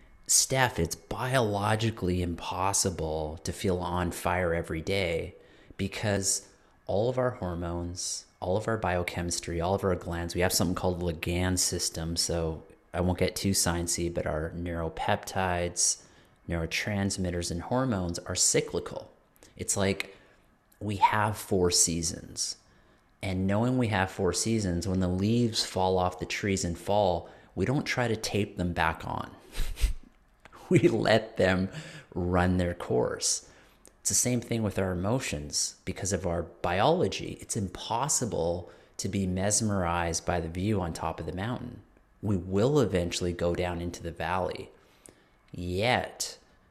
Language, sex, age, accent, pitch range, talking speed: English, male, 30-49, American, 85-100 Hz, 145 wpm